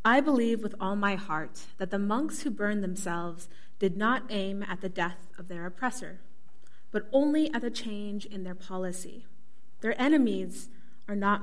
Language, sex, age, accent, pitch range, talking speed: English, female, 30-49, American, 185-240 Hz, 175 wpm